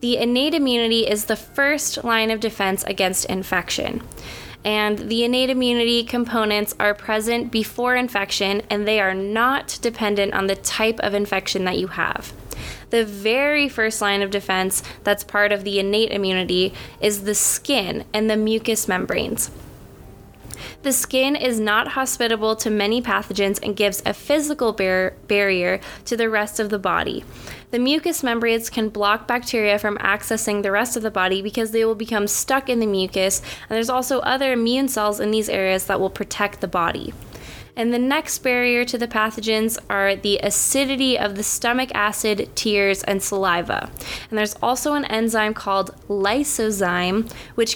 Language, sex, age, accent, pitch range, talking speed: English, female, 10-29, American, 200-240 Hz, 165 wpm